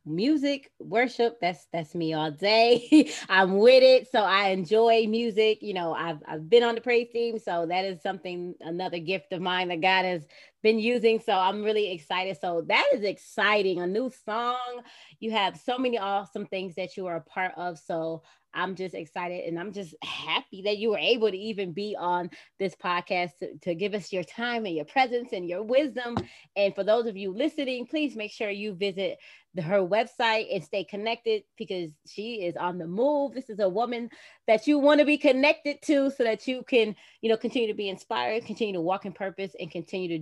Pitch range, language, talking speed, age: 180-235 Hz, English, 210 wpm, 20-39